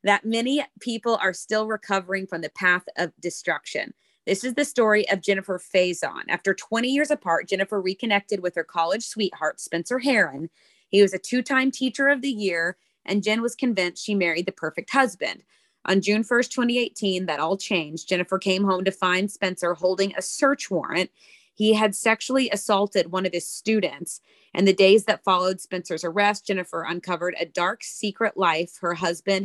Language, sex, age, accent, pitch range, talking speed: English, female, 30-49, American, 175-220 Hz, 175 wpm